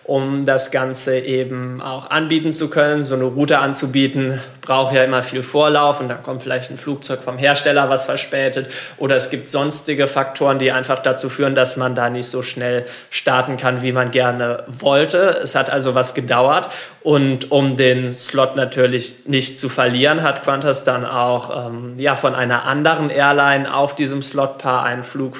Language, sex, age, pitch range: German, male, 20-39, 130-140 Hz